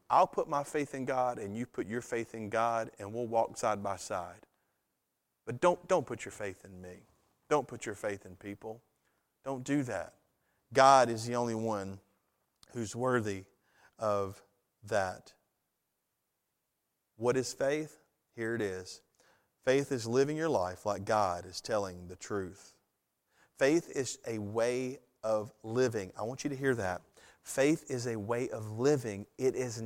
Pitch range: 110-150 Hz